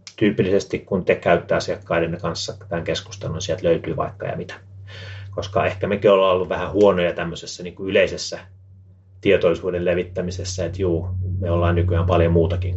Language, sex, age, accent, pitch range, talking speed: Finnish, male, 30-49, native, 85-110 Hz, 150 wpm